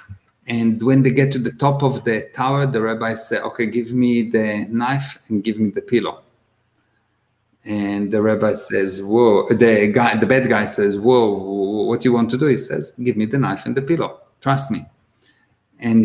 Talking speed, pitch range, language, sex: 200 wpm, 110-135 Hz, English, male